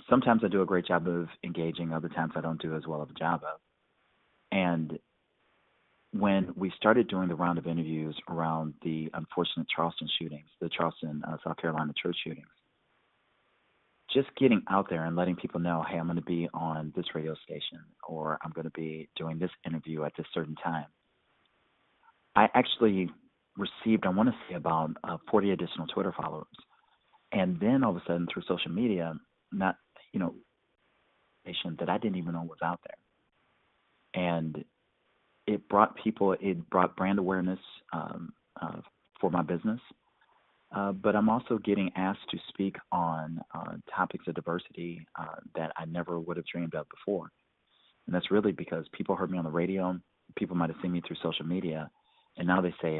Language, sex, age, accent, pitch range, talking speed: English, male, 40-59, American, 80-95 Hz, 180 wpm